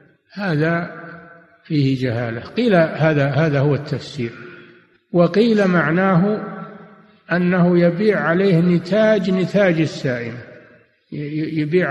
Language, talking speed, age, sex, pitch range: Arabic, 85 wpm, 60-79, male, 145-185 Hz